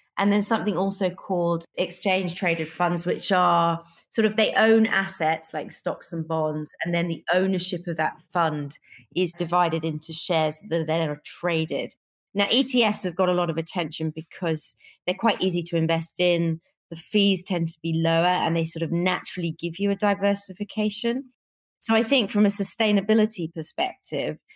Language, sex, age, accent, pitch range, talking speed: English, female, 30-49, British, 165-195 Hz, 170 wpm